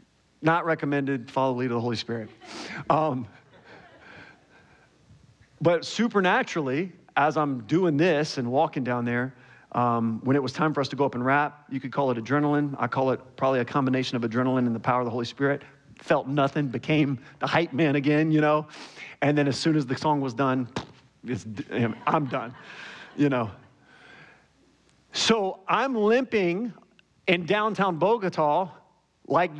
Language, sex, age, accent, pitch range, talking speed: English, male, 40-59, American, 125-155 Hz, 165 wpm